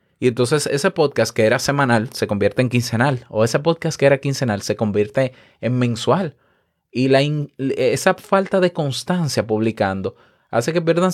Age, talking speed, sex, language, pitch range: 30-49, 170 wpm, male, Spanish, 105-140 Hz